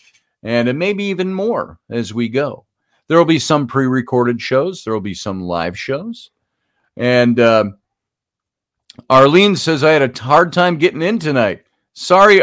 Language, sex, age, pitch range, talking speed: English, male, 50-69, 115-150 Hz, 155 wpm